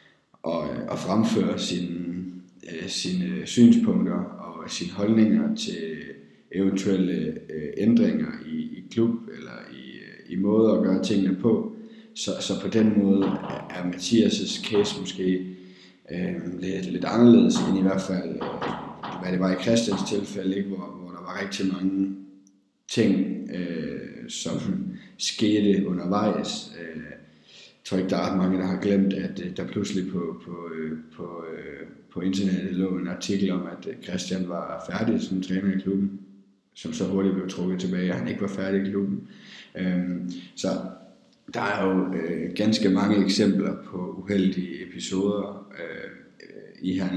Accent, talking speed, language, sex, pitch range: native, 160 wpm, Danish, male, 90-110 Hz